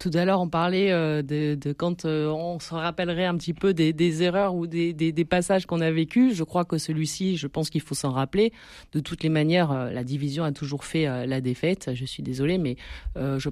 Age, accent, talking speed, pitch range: 30-49, French, 225 wpm, 155-205 Hz